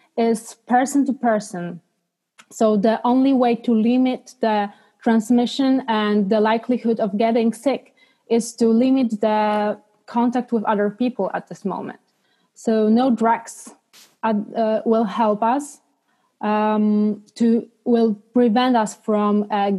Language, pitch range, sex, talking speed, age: English, 210-245 Hz, female, 125 wpm, 20-39